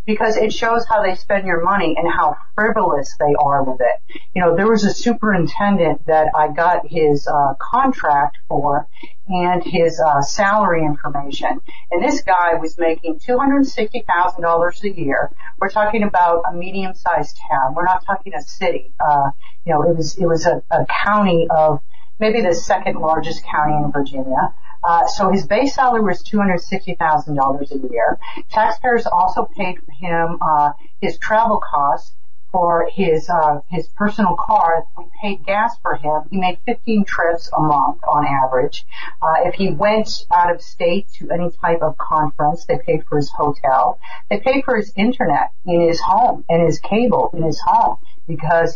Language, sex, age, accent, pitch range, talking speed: English, female, 50-69, American, 155-210 Hz, 175 wpm